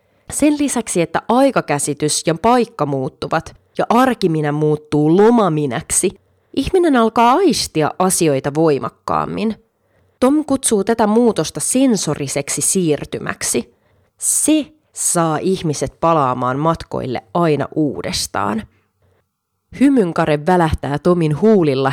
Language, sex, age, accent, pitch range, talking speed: Finnish, female, 30-49, native, 150-215 Hz, 90 wpm